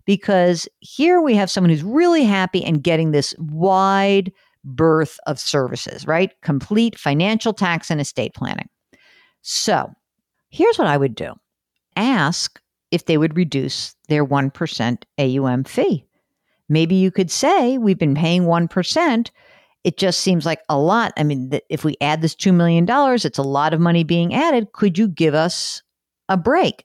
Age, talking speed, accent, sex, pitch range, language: 50-69, 160 wpm, American, female, 150-200 Hz, English